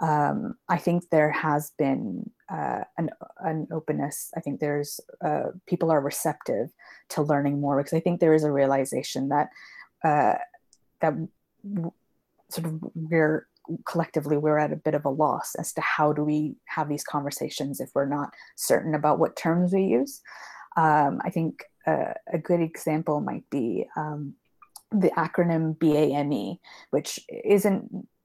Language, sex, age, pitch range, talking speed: English, female, 30-49, 145-170 Hz, 155 wpm